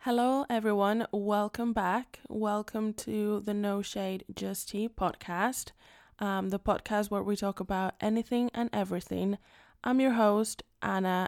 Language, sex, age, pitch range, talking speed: English, female, 10-29, 185-220 Hz, 140 wpm